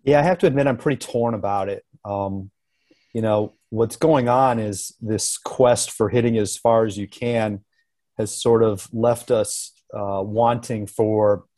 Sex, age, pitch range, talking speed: male, 30-49, 105-125 Hz, 175 wpm